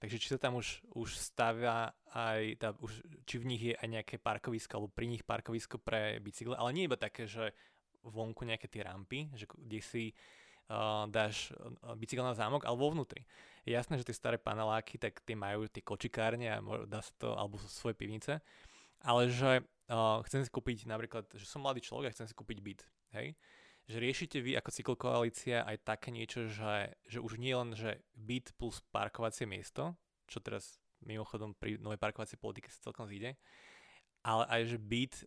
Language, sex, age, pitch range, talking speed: Slovak, male, 20-39, 110-120 Hz, 190 wpm